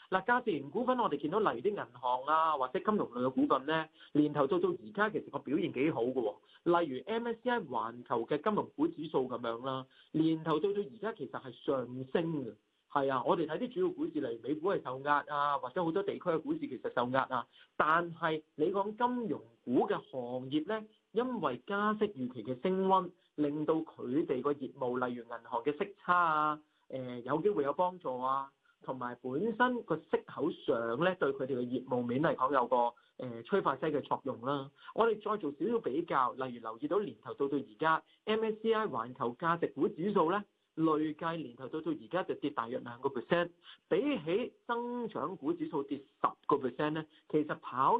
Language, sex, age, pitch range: Chinese, male, 40-59, 130-205 Hz